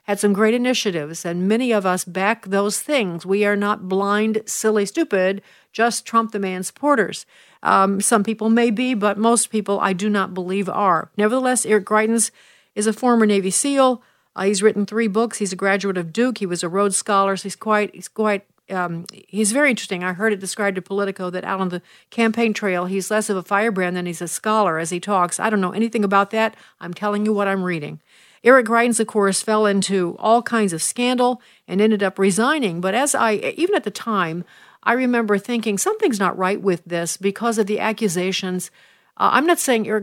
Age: 50-69